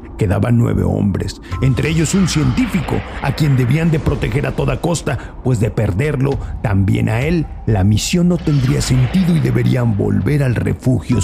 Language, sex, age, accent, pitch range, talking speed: Spanish, male, 50-69, Mexican, 120-155 Hz, 165 wpm